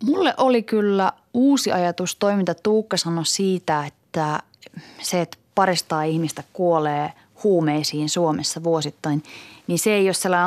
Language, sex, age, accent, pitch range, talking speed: Finnish, female, 30-49, native, 160-225 Hz, 140 wpm